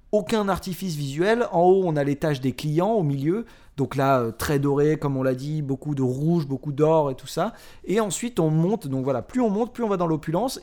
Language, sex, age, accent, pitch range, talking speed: French, male, 30-49, French, 130-170 Hz, 245 wpm